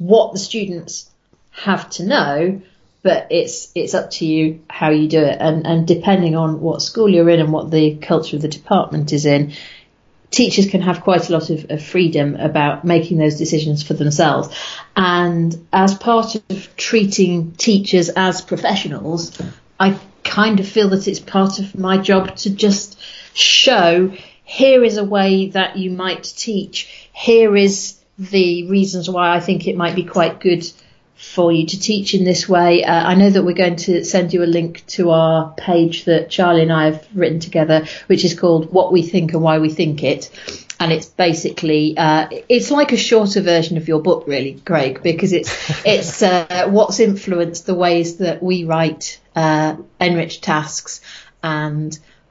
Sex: female